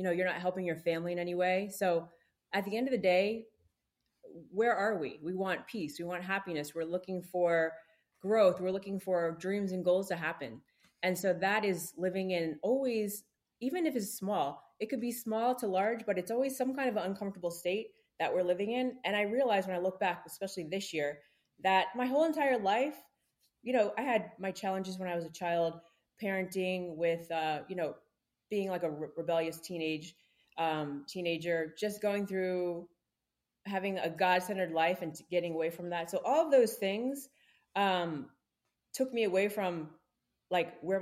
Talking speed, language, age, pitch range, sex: 190 wpm, English, 20-39, 175-215 Hz, female